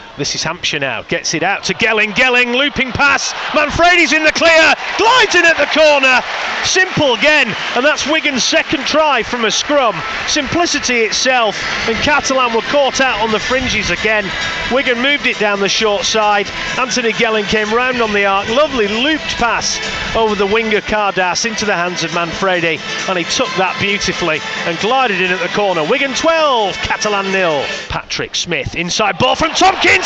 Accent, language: British, English